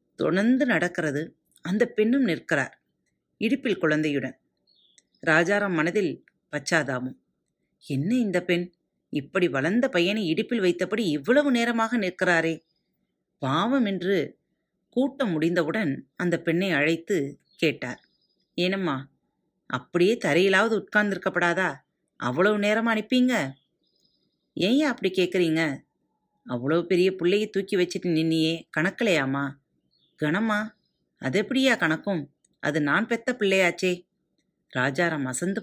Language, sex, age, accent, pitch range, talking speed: Tamil, female, 30-49, native, 155-210 Hz, 95 wpm